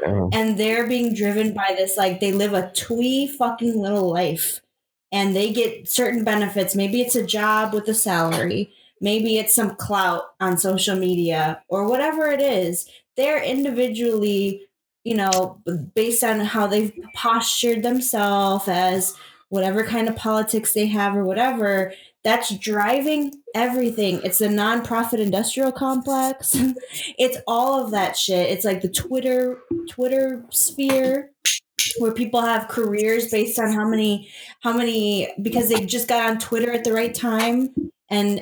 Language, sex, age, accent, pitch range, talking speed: English, female, 20-39, American, 195-235 Hz, 150 wpm